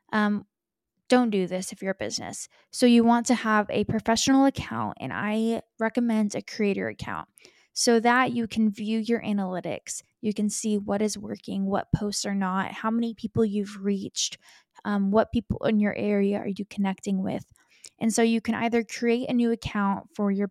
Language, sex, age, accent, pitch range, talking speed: English, female, 20-39, American, 205-235 Hz, 190 wpm